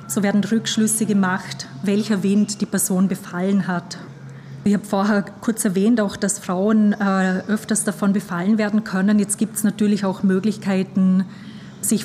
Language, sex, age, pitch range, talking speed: German, female, 30-49, 190-210 Hz, 155 wpm